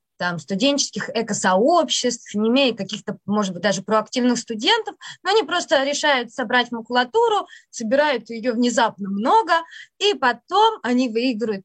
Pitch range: 210-280 Hz